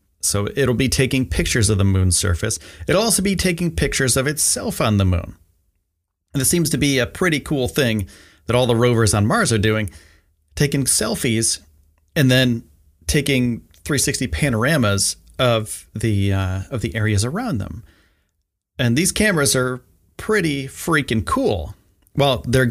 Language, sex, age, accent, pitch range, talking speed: English, male, 30-49, American, 90-140 Hz, 160 wpm